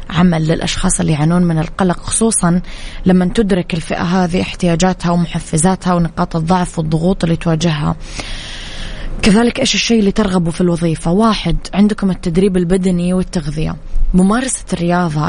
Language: Arabic